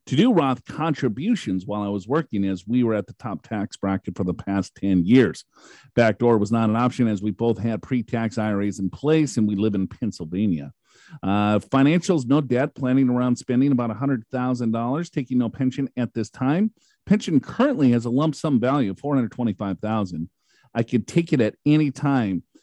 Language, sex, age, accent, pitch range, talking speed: English, male, 40-59, American, 110-145 Hz, 185 wpm